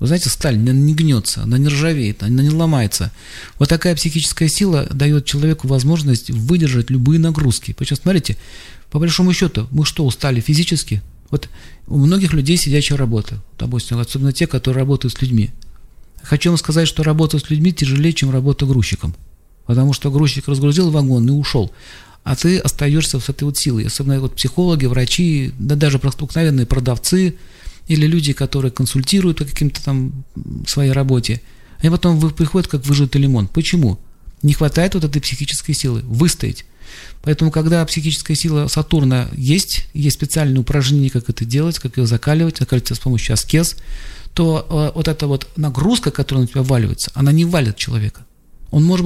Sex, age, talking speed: male, 40-59, 165 wpm